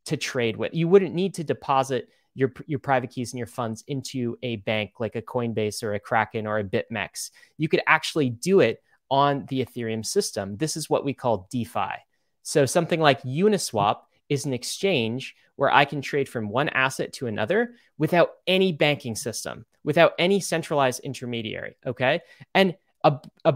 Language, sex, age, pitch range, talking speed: Italian, male, 30-49, 120-160 Hz, 180 wpm